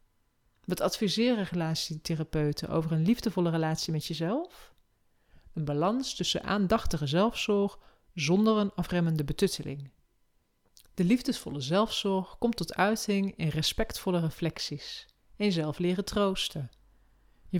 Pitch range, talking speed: 155-200 Hz, 110 wpm